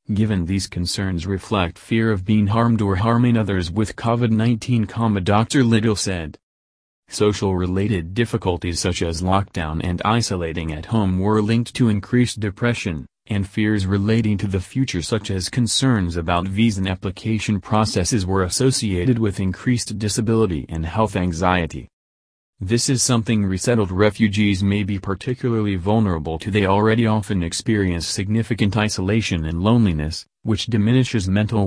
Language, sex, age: English, male, 30-49